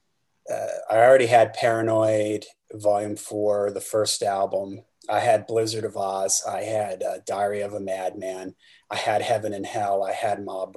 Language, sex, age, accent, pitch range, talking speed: English, male, 30-49, American, 110-135 Hz, 165 wpm